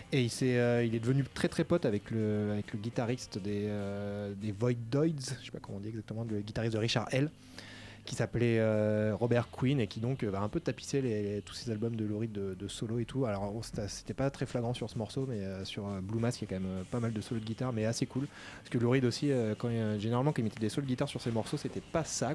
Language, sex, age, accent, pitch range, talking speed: French, male, 20-39, French, 105-125 Hz, 280 wpm